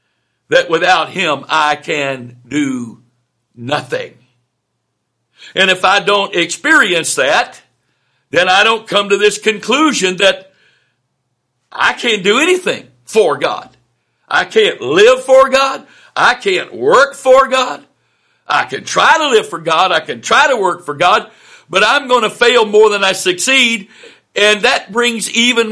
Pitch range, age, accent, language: 180-265 Hz, 60-79, American, English